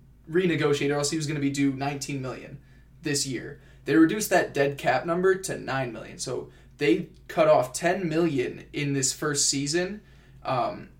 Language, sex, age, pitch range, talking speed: English, male, 20-39, 135-165 Hz, 180 wpm